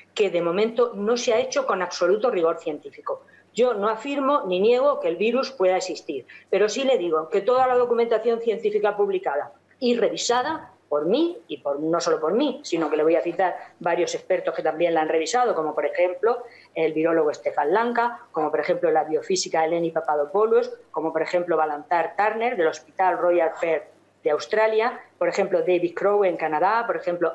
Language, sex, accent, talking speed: Spanish, female, Spanish, 190 wpm